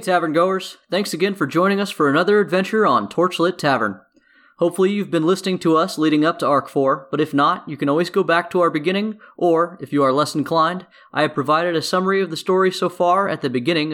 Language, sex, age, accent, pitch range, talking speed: English, male, 20-39, American, 145-190 Hz, 235 wpm